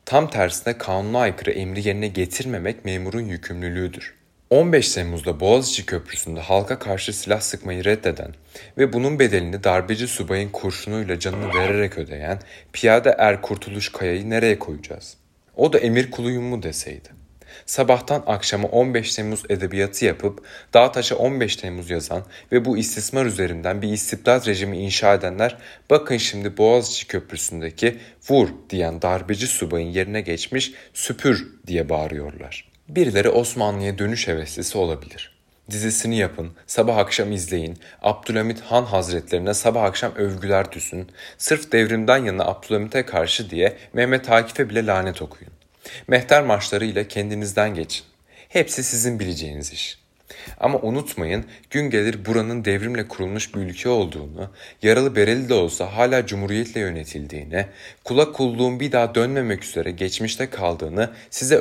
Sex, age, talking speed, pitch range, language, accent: male, 30-49, 130 wpm, 90-115 Hz, Turkish, native